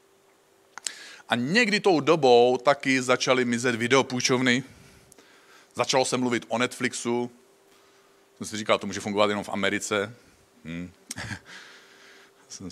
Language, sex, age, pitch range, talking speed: Czech, male, 40-59, 115-140 Hz, 110 wpm